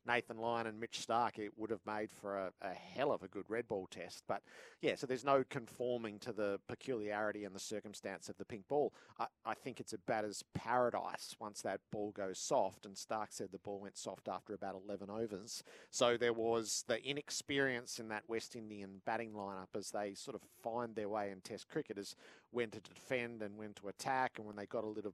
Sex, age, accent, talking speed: male, 50-69, Australian, 220 wpm